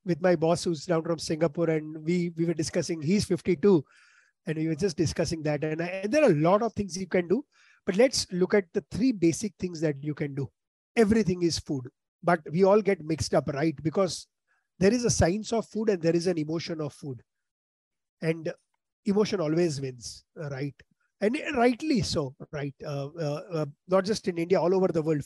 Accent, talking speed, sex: Indian, 210 wpm, male